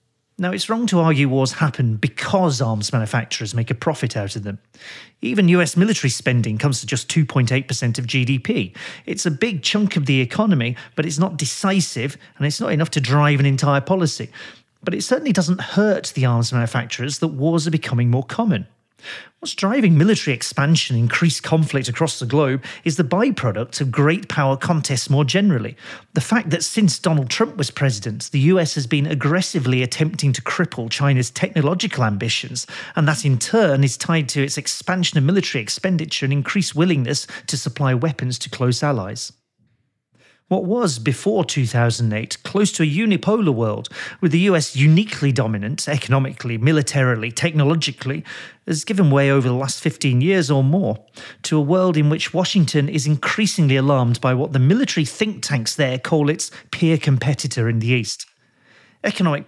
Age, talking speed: 40-59, 170 wpm